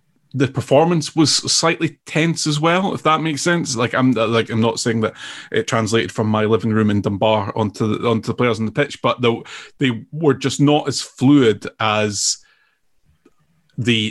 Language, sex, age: English, male, 30-49